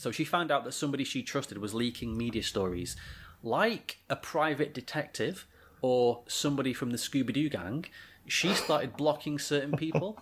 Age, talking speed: 30-49, 160 wpm